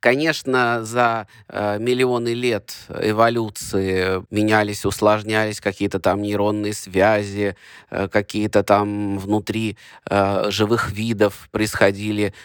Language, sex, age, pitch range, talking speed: Russian, male, 20-39, 105-130 Hz, 95 wpm